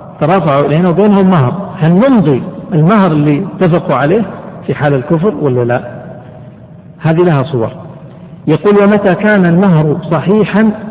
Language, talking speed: Arabic, 125 wpm